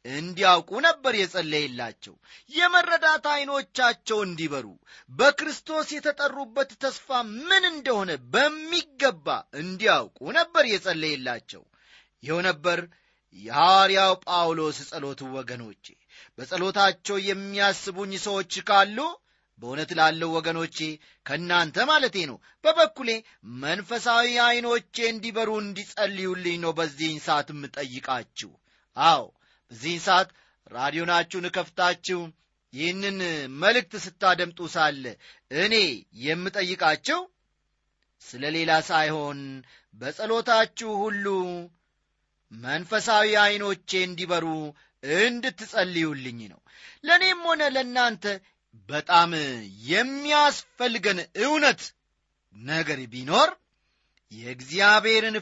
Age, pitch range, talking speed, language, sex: 30-49, 155-230 Hz, 70 wpm, Amharic, male